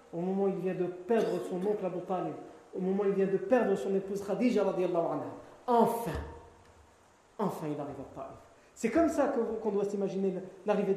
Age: 40-59